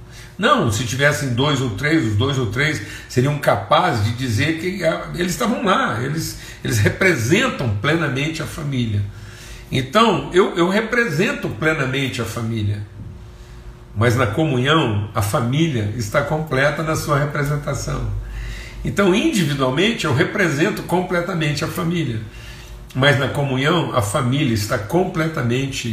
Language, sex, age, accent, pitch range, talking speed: Portuguese, male, 60-79, Brazilian, 110-155 Hz, 125 wpm